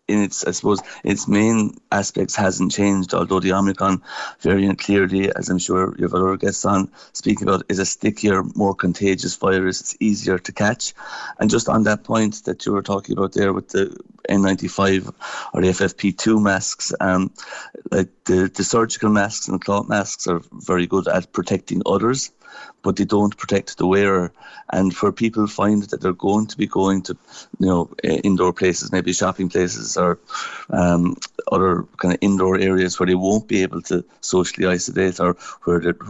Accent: Irish